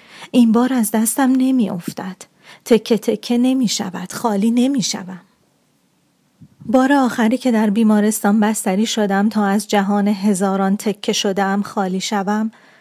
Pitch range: 200-230 Hz